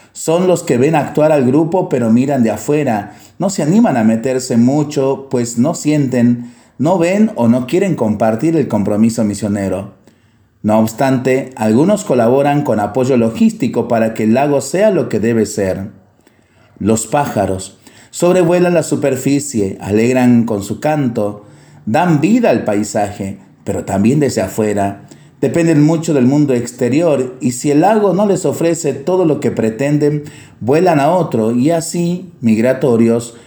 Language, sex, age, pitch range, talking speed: Spanish, male, 40-59, 110-150 Hz, 150 wpm